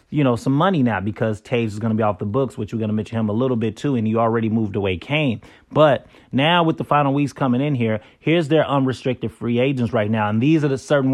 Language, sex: English, male